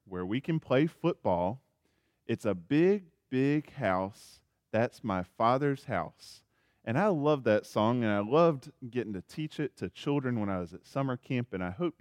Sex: male